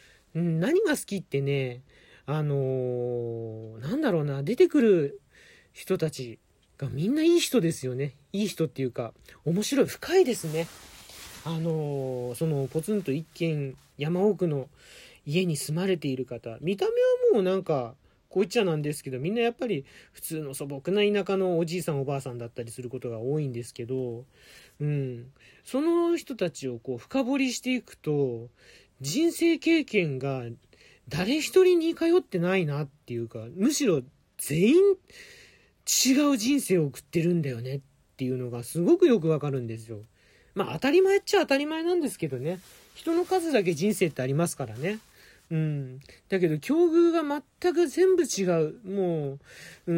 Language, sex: Japanese, male